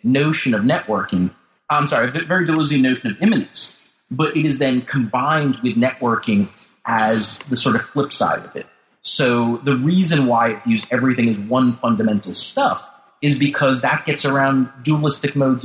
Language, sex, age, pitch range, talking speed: English, male, 30-49, 115-145 Hz, 165 wpm